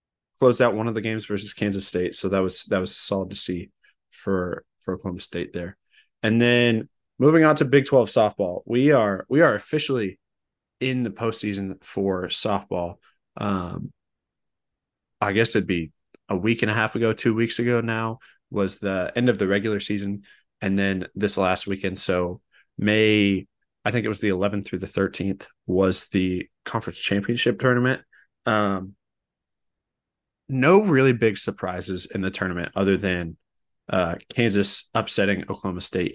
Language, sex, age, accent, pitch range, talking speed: English, male, 20-39, American, 95-115 Hz, 165 wpm